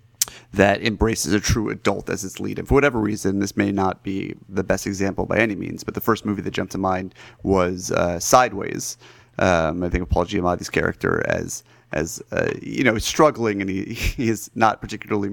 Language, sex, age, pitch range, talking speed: English, male, 30-49, 95-115 Hz, 205 wpm